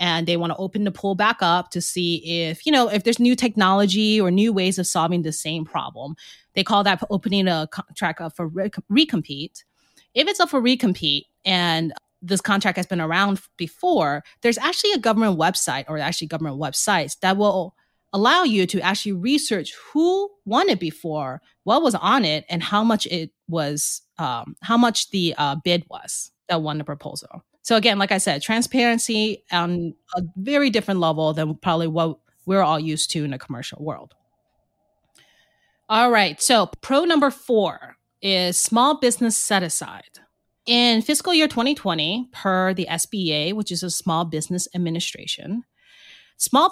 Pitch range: 165-225 Hz